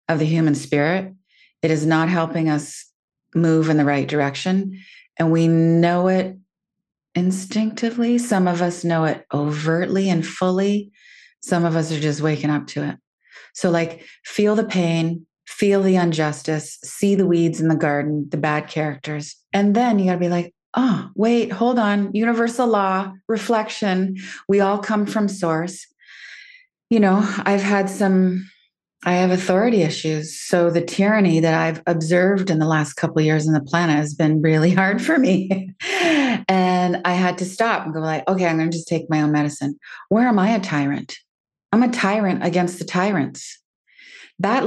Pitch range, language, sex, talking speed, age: 155-200 Hz, English, female, 175 wpm, 30-49